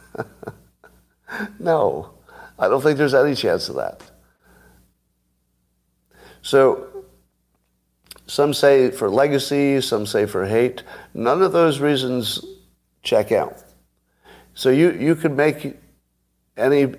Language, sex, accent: English, male, American